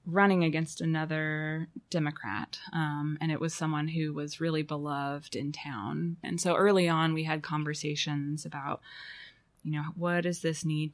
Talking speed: 160 wpm